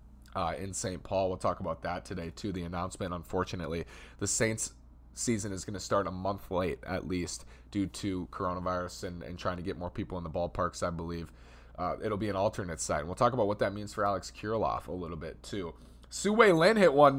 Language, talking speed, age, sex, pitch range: English, 225 wpm, 30-49, male, 90-110 Hz